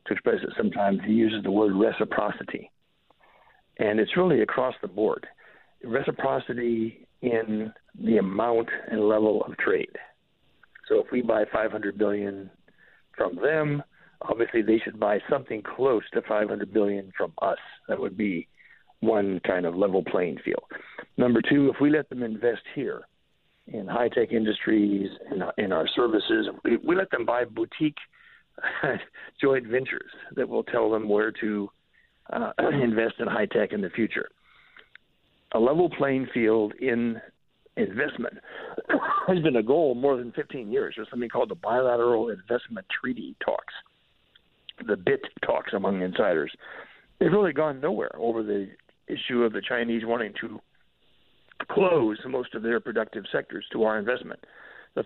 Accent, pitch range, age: American, 110-150 Hz, 60-79